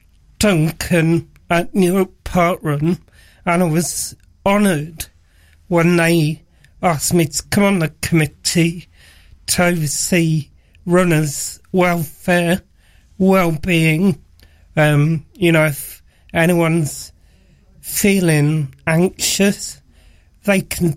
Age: 40-59